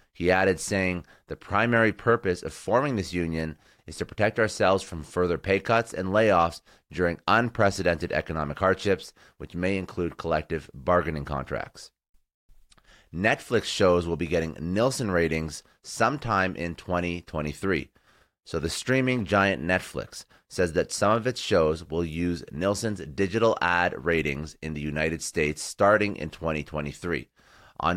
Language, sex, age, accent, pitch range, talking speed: English, male, 30-49, American, 80-95 Hz, 140 wpm